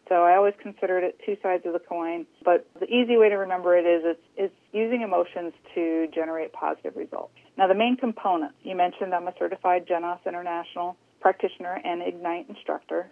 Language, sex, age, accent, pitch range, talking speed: English, female, 40-59, American, 170-220 Hz, 190 wpm